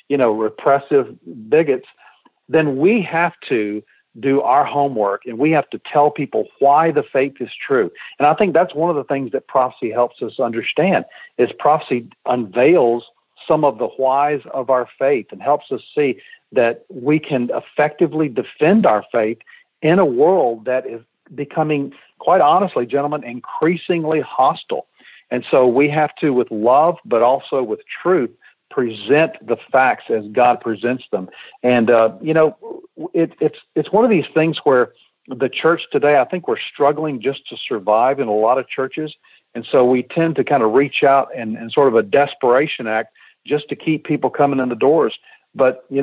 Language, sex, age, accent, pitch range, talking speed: English, male, 50-69, American, 120-155 Hz, 180 wpm